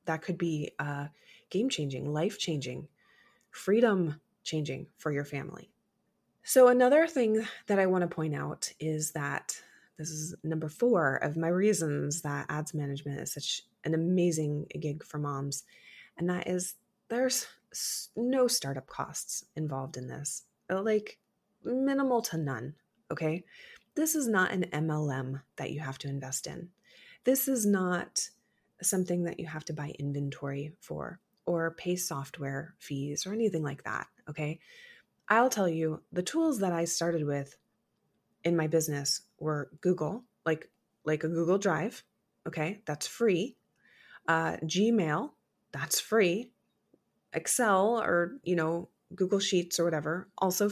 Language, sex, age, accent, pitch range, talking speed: English, female, 20-39, American, 150-200 Hz, 140 wpm